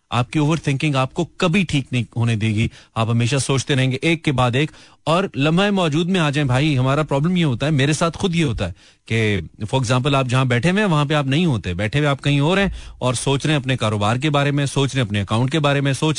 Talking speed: 255 wpm